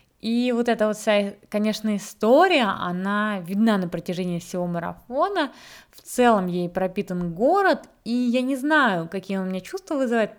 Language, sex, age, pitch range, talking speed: Russian, female, 20-39, 185-250 Hz, 155 wpm